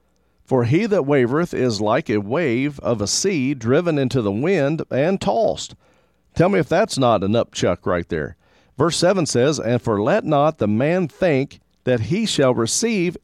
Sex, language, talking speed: male, English, 180 wpm